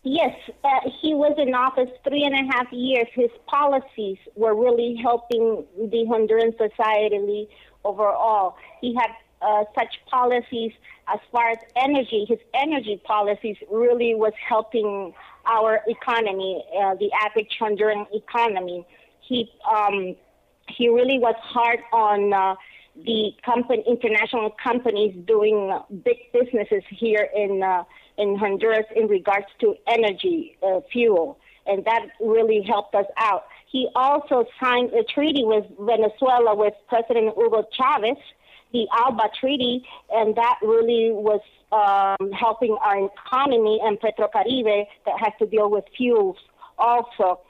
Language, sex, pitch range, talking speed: English, female, 210-250 Hz, 135 wpm